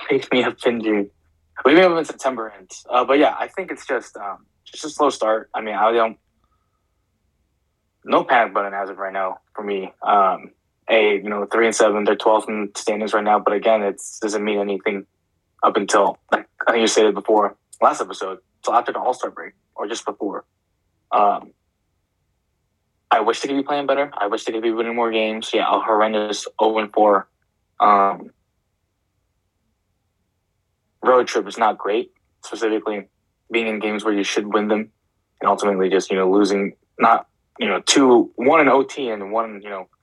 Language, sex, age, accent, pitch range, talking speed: English, male, 20-39, American, 95-110 Hz, 195 wpm